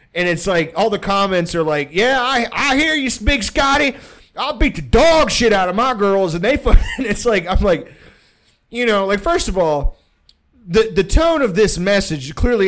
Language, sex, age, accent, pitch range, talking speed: English, male, 30-49, American, 130-190 Hz, 210 wpm